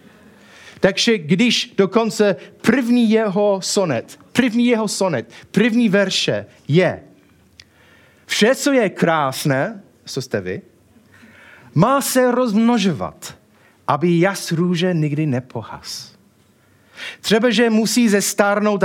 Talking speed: 100 wpm